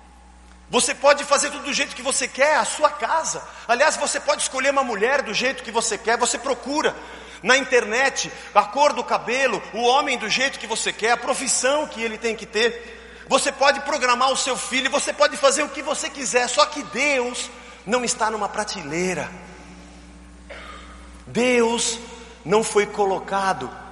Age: 50-69